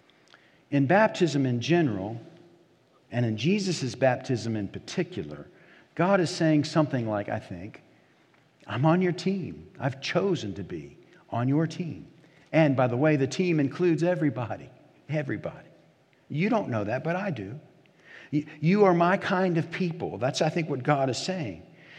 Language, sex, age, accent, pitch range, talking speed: English, male, 50-69, American, 115-160 Hz, 155 wpm